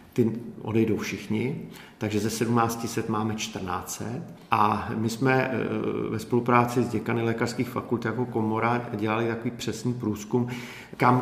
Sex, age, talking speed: male, 50-69, 130 wpm